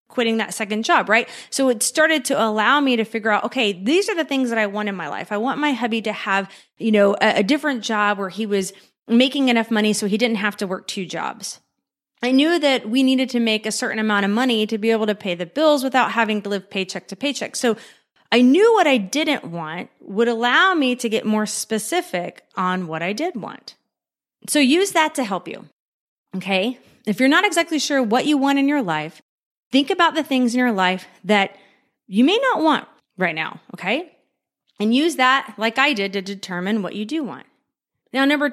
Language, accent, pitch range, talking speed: English, American, 210-275 Hz, 225 wpm